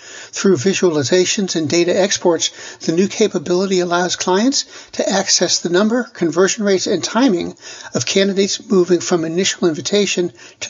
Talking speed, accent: 140 wpm, American